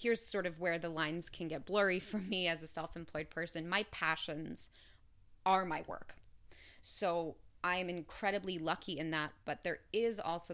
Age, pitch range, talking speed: 20-39, 155-185 Hz, 175 wpm